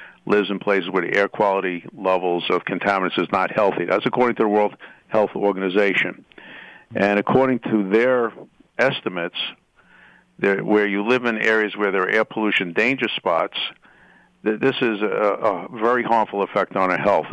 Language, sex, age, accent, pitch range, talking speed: English, male, 50-69, American, 95-110 Hz, 165 wpm